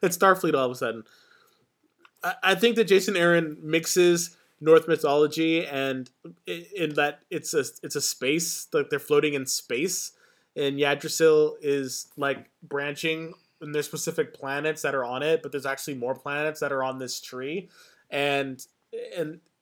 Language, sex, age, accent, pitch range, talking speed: English, male, 20-39, American, 140-170 Hz, 160 wpm